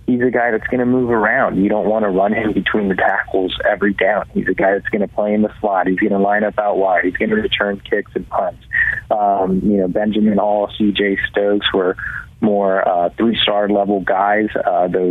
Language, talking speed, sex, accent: English, 225 wpm, male, American